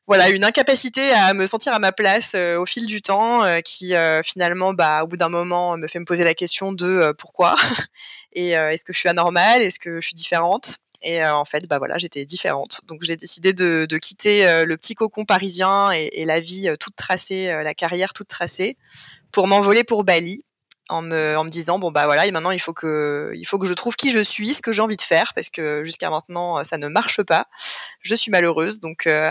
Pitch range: 165-200 Hz